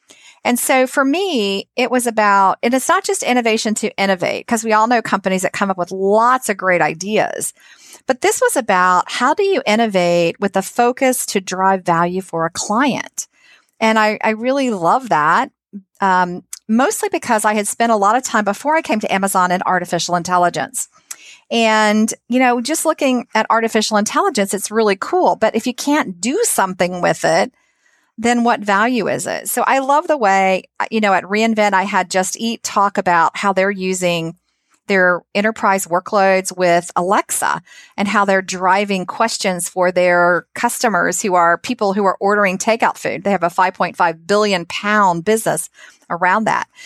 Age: 40-59